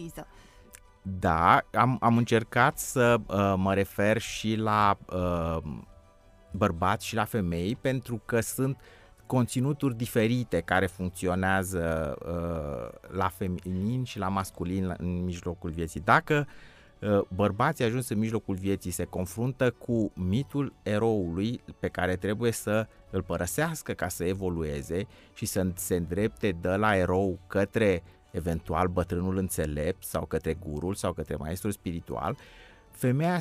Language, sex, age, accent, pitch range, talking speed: Romanian, male, 30-49, native, 90-115 Hz, 120 wpm